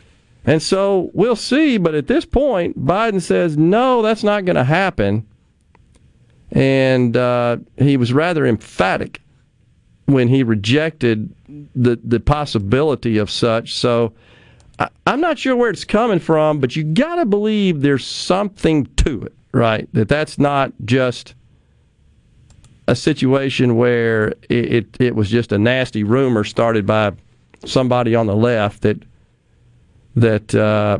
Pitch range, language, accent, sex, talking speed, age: 115-160 Hz, English, American, male, 140 wpm, 40-59